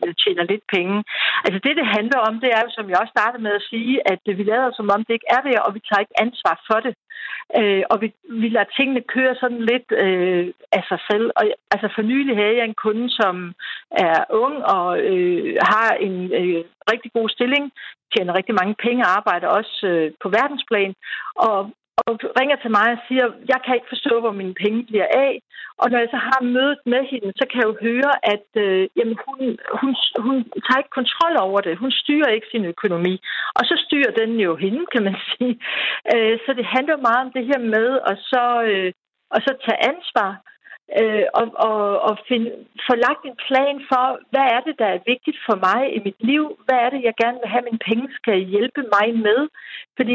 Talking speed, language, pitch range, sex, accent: 210 wpm, Danish, 210-260 Hz, female, native